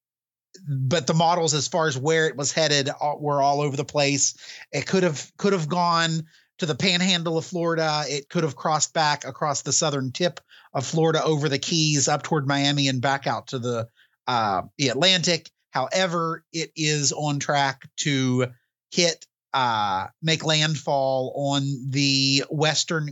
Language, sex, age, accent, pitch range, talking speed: English, male, 30-49, American, 135-160 Hz, 165 wpm